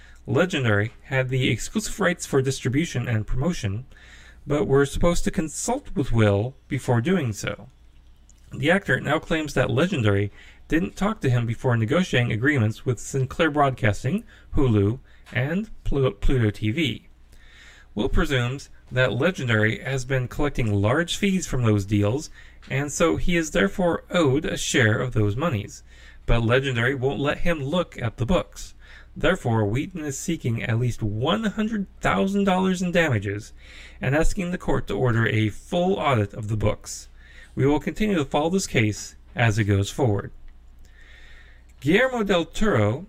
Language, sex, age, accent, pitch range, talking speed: English, male, 30-49, American, 105-155 Hz, 150 wpm